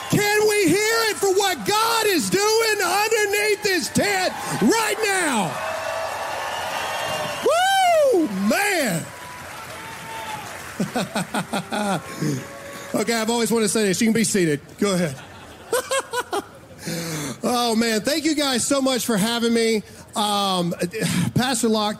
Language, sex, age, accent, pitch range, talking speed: English, male, 40-59, American, 190-275 Hz, 115 wpm